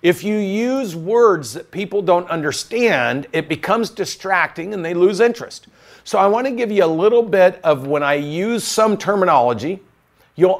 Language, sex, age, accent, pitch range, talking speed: English, male, 50-69, American, 150-210 Hz, 170 wpm